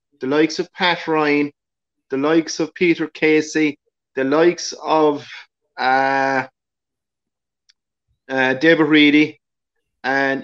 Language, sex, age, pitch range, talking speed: English, male, 30-49, 145-175 Hz, 105 wpm